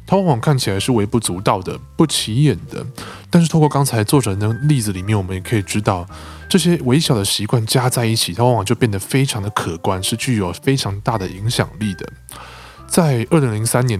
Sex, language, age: male, Chinese, 20-39